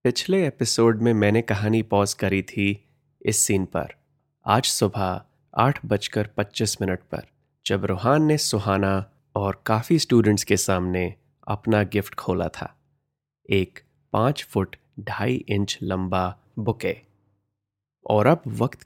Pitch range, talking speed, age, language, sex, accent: 100-120 Hz, 130 wpm, 30-49, Hindi, male, native